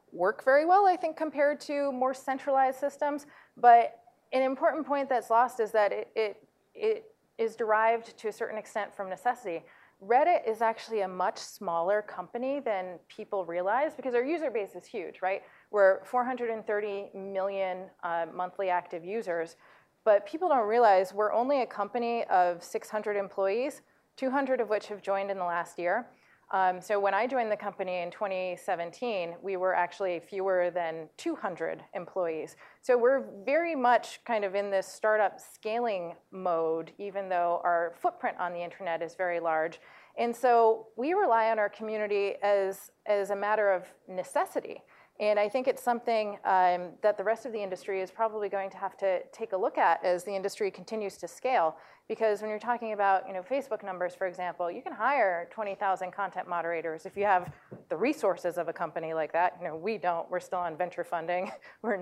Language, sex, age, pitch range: English, female, 30-49, 180-235 Hz